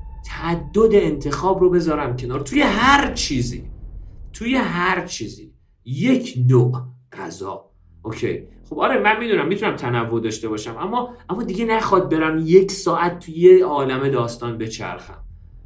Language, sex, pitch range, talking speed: Persian, male, 130-205 Hz, 135 wpm